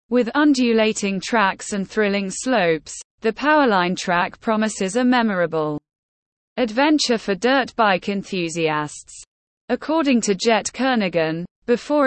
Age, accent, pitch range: 20-39, British, 180-250 Hz